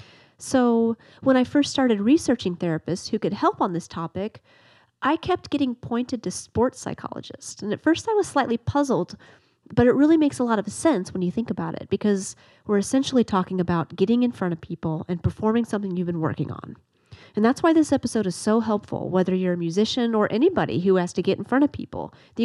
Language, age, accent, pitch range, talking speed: English, 30-49, American, 180-245 Hz, 215 wpm